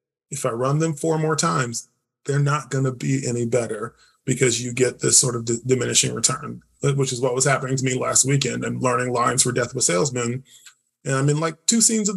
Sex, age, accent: male, 20-39, American